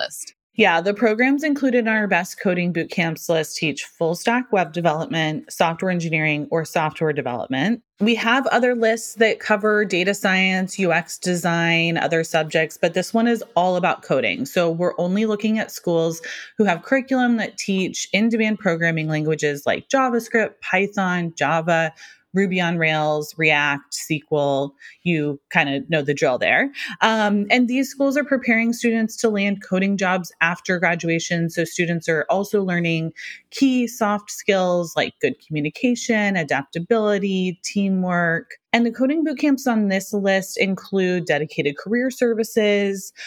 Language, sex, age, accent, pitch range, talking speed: English, female, 30-49, American, 160-220 Hz, 150 wpm